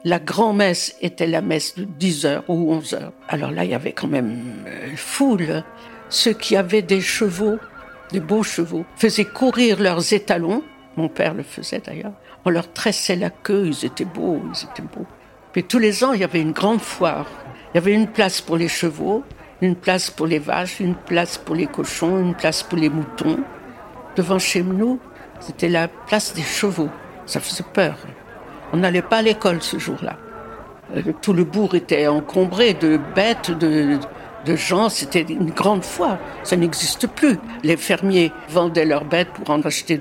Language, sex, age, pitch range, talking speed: French, female, 60-79, 165-210 Hz, 185 wpm